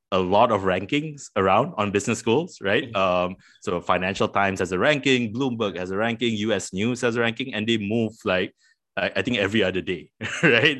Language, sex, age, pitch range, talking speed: English, male, 20-39, 95-120 Hz, 195 wpm